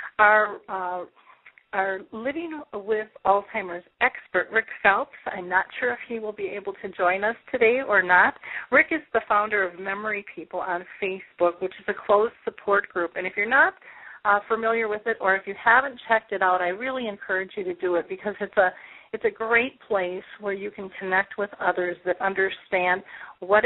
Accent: American